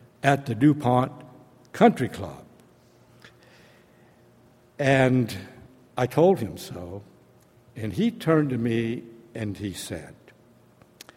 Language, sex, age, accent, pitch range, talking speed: English, male, 70-89, American, 110-145 Hz, 95 wpm